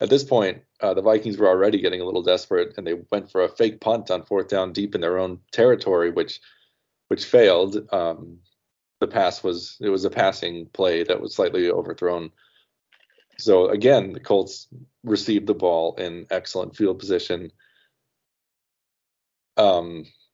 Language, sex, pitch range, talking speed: English, male, 100-140 Hz, 160 wpm